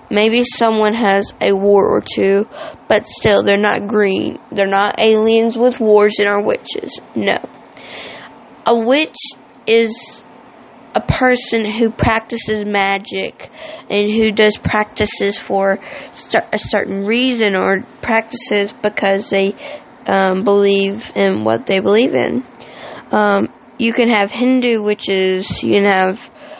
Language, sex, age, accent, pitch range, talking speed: English, female, 20-39, American, 205-240 Hz, 130 wpm